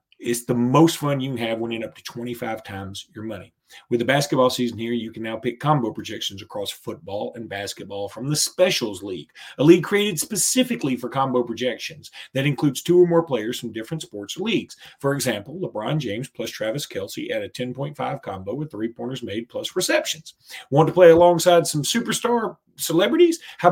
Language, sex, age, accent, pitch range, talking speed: English, male, 40-59, American, 120-165 Hz, 185 wpm